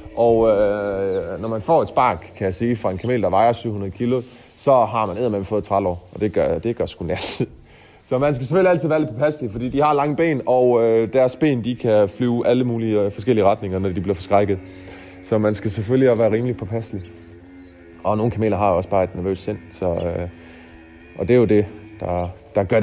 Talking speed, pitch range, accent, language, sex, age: 225 wpm, 95-125 Hz, native, Danish, male, 30-49